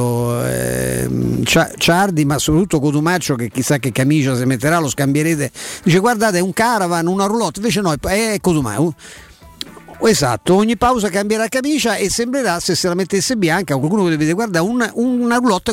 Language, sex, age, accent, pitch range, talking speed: Italian, male, 50-69, native, 140-190 Hz, 155 wpm